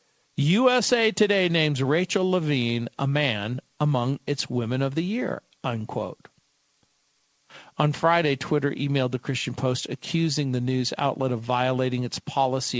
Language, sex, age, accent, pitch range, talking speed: English, male, 50-69, American, 130-165 Hz, 135 wpm